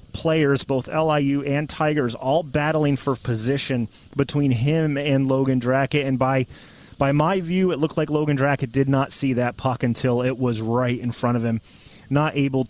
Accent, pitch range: American, 120-145 Hz